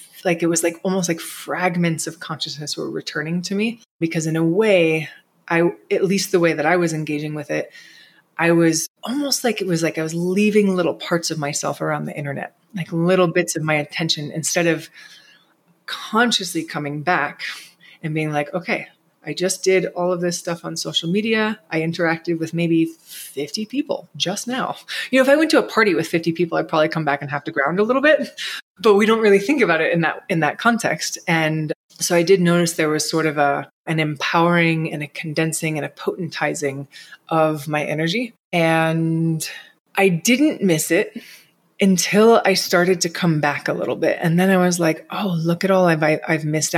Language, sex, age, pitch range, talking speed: English, female, 20-39, 155-185 Hz, 205 wpm